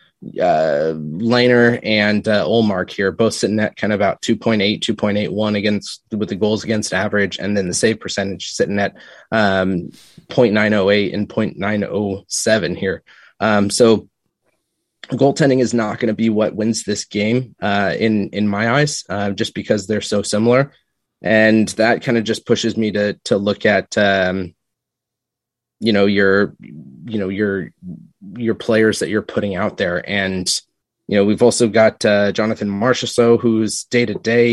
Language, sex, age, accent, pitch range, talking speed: English, male, 20-39, American, 100-115 Hz, 160 wpm